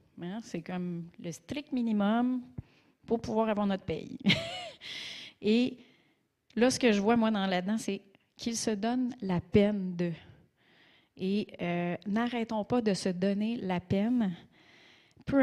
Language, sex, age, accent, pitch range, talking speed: French, female, 30-49, Canadian, 185-220 Hz, 140 wpm